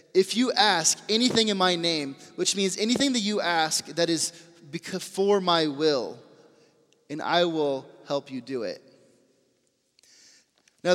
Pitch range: 150-185 Hz